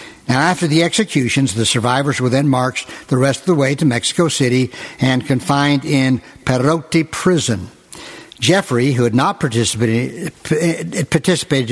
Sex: male